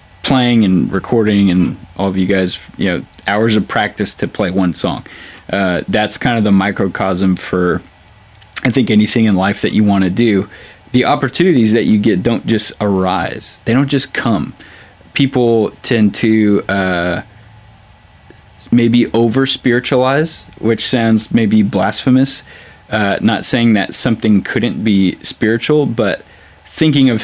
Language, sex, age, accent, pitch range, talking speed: English, male, 20-39, American, 95-120 Hz, 150 wpm